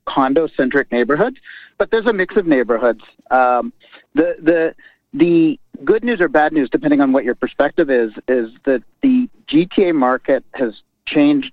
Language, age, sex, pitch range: English, 40-59, male, 135-180 Hz